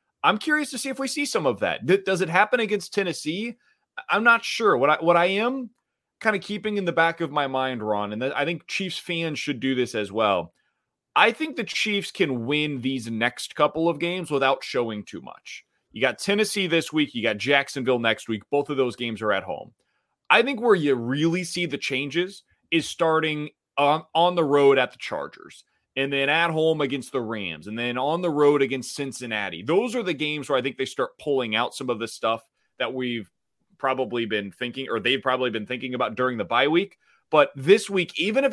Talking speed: 220 wpm